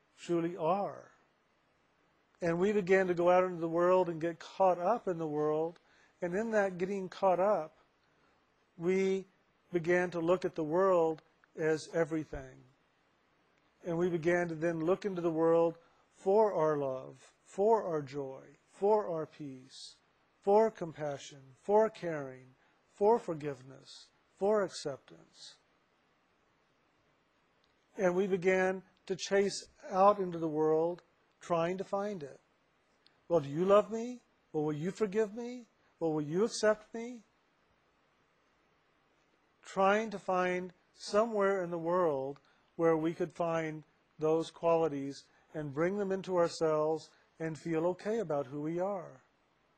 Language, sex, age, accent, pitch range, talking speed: English, male, 50-69, American, 160-195 Hz, 135 wpm